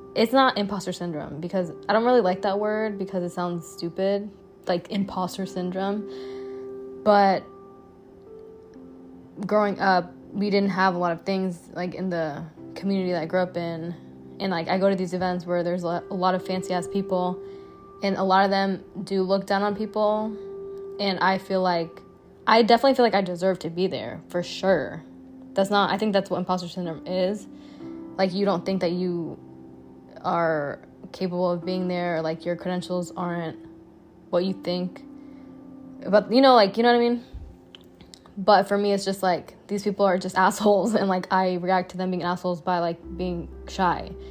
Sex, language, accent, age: female, English, American, 10-29